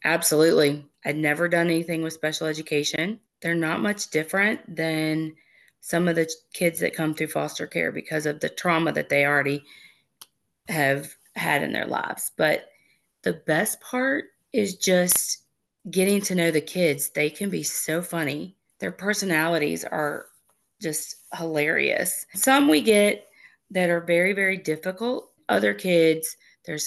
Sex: female